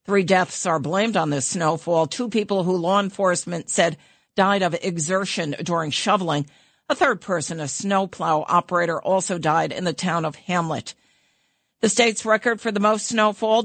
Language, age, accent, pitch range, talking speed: English, 50-69, American, 160-205 Hz, 165 wpm